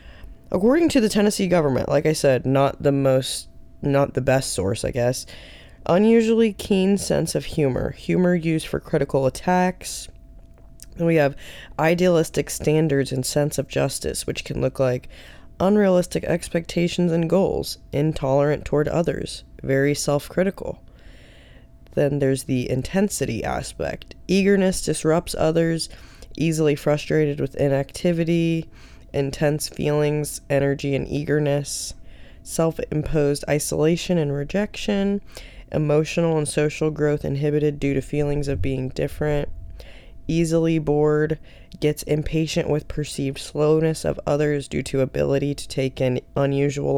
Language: English